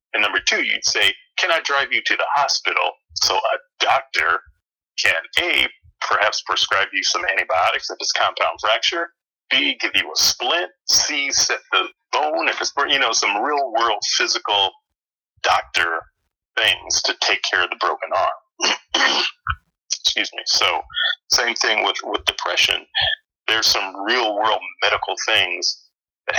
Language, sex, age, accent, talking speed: English, male, 40-59, American, 150 wpm